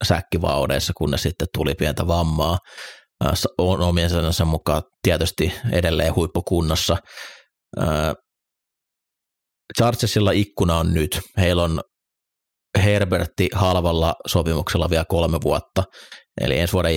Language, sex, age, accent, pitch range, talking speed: Finnish, male, 30-49, native, 80-95 Hz, 100 wpm